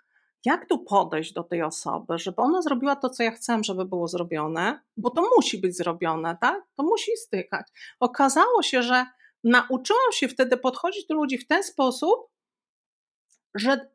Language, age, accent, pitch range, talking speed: Polish, 40-59, native, 225-315 Hz, 165 wpm